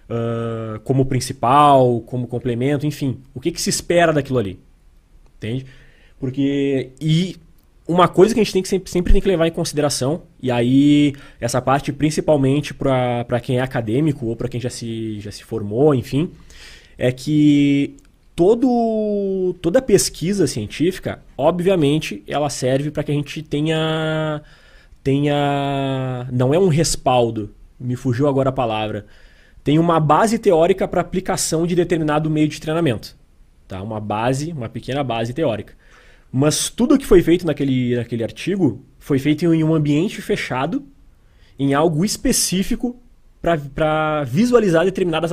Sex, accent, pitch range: male, Brazilian, 125-165 Hz